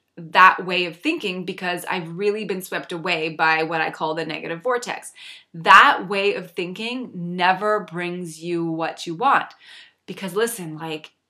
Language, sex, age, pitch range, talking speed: English, female, 20-39, 175-215 Hz, 160 wpm